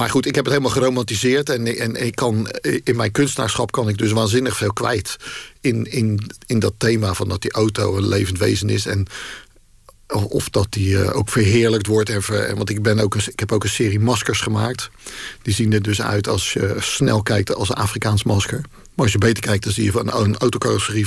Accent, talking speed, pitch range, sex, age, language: Dutch, 215 wpm, 105-120 Hz, male, 50-69, Dutch